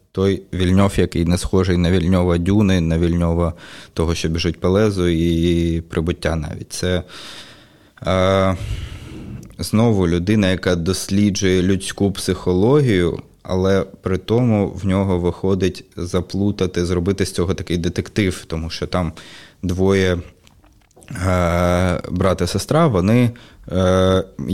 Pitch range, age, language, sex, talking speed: 85-95 Hz, 20-39, Ukrainian, male, 120 wpm